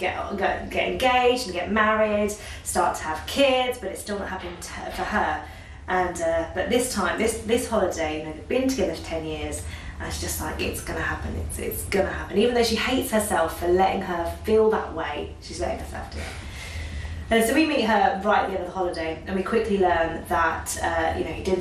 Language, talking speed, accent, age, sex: English, 230 wpm, British, 20-39, female